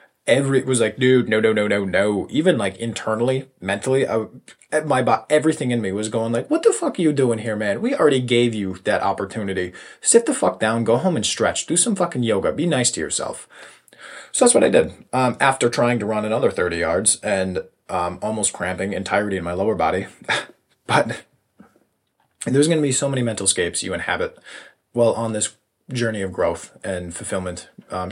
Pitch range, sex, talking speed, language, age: 95-120 Hz, male, 205 wpm, English, 20-39